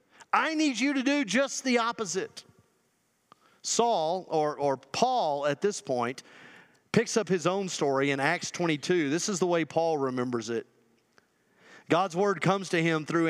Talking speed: 160 wpm